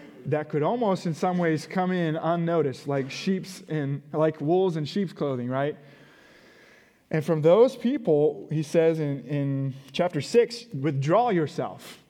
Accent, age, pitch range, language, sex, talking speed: American, 20-39, 145-185 Hz, English, male, 150 wpm